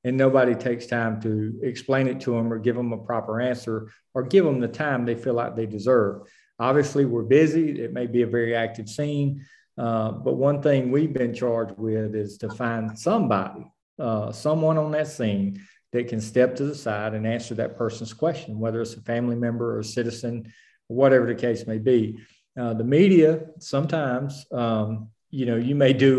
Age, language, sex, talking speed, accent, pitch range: 40-59, English, male, 195 wpm, American, 115-130 Hz